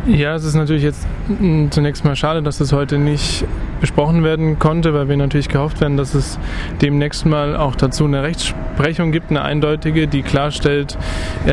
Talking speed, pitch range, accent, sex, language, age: 170 wpm, 140-155 Hz, German, male, German, 20-39